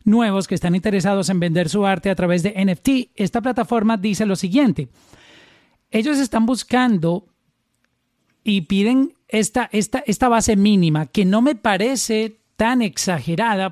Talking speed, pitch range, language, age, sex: 145 wpm, 180-230 Hz, Spanish, 40-59, male